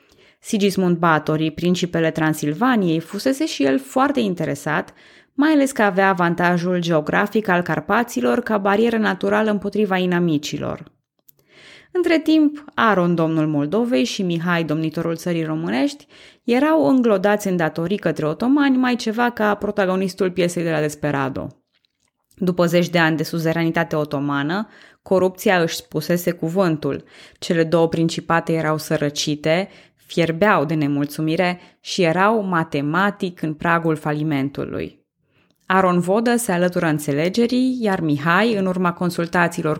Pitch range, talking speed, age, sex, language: 160-205 Hz, 120 wpm, 20-39, female, Romanian